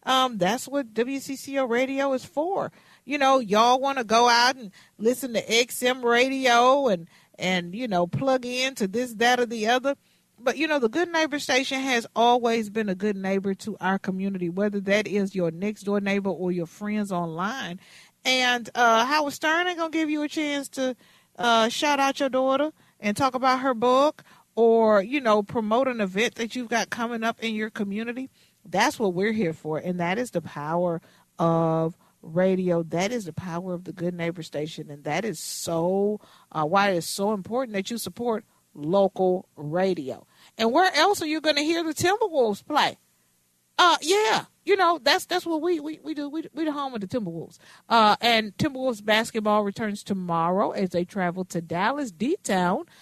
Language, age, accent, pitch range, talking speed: English, 40-59, American, 190-265 Hz, 190 wpm